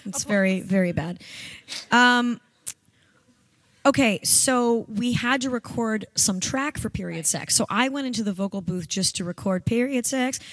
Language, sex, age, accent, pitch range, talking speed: English, female, 20-39, American, 190-240 Hz, 160 wpm